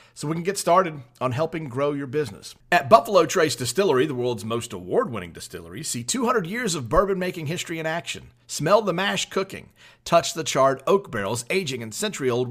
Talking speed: 185 wpm